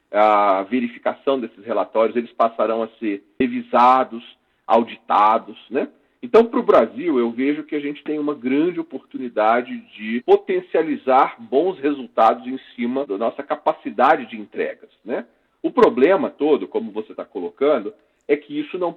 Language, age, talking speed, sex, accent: Portuguese, 40-59, 150 wpm, male, Brazilian